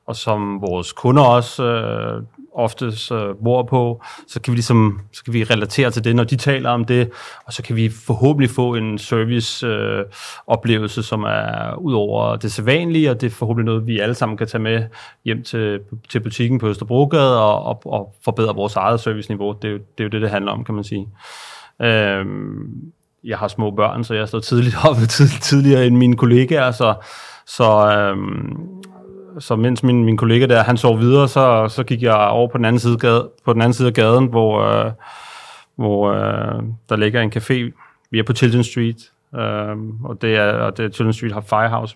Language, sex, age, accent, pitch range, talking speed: Danish, male, 30-49, native, 110-125 Hz, 205 wpm